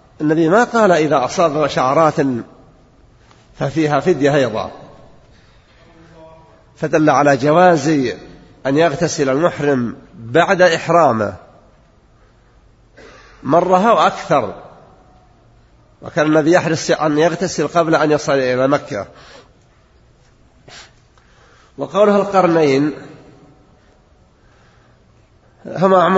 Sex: male